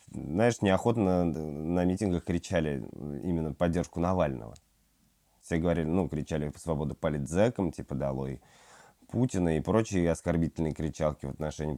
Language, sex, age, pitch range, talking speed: Russian, male, 20-39, 75-95 Hz, 125 wpm